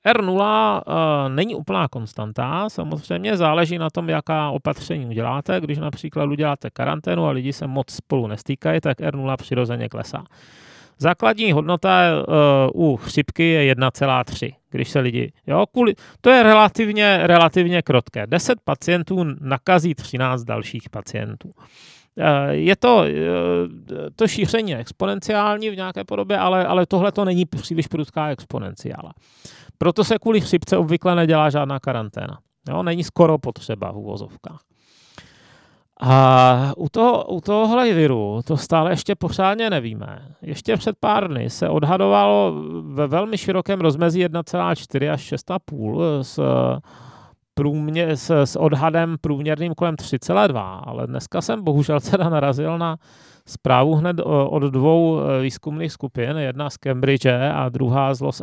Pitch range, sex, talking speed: 130-180 Hz, male, 125 wpm